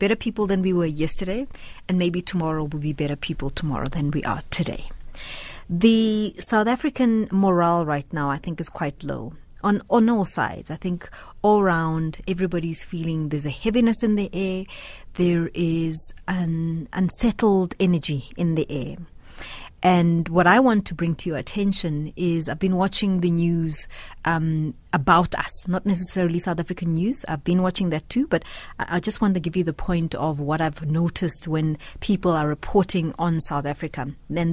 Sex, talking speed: female, 175 wpm